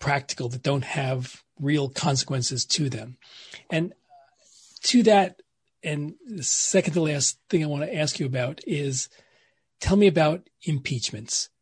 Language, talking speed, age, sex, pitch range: English, 145 wpm, 40-59, male, 135-170 Hz